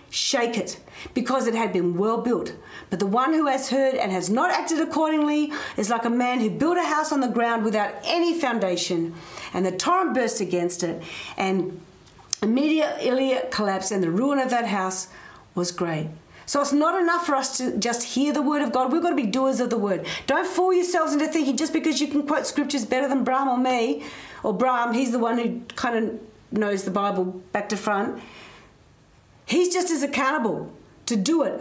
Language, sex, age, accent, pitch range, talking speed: English, female, 40-59, Australian, 205-285 Hz, 205 wpm